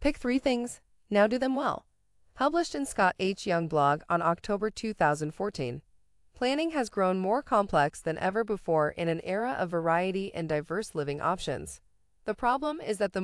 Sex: female